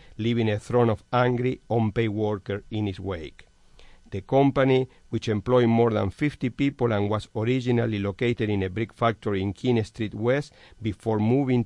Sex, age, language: male, 50-69, English